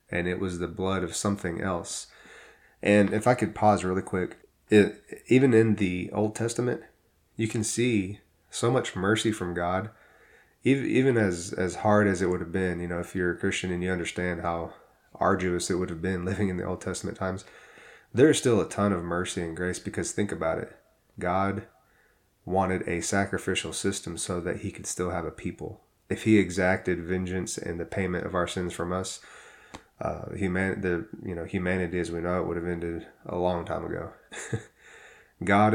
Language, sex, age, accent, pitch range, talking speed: English, male, 20-39, American, 85-100 Hz, 195 wpm